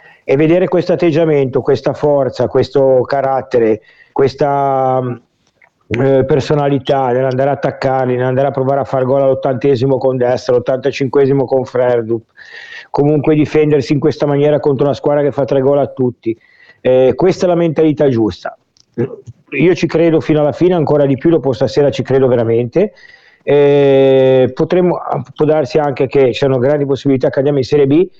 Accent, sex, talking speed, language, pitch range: native, male, 155 wpm, Italian, 135-160 Hz